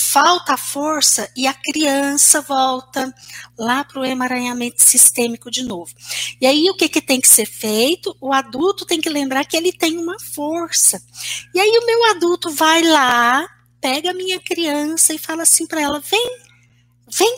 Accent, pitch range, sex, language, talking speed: Brazilian, 235-325 Hz, female, Portuguese, 175 wpm